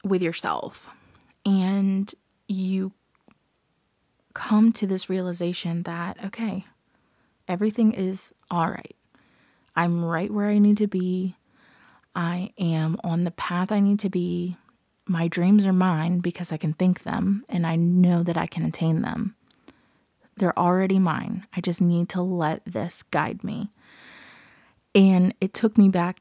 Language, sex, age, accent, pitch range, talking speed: English, female, 20-39, American, 175-205 Hz, 145 wpm